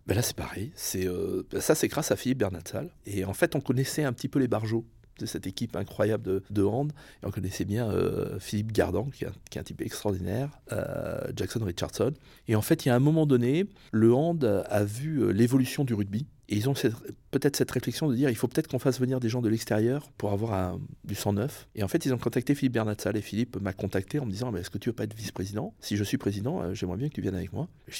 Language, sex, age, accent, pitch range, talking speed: French, male, 40-59, French, 100-135 Hz, 270 wpm